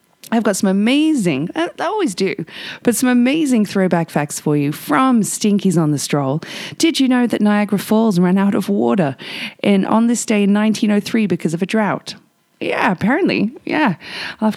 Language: English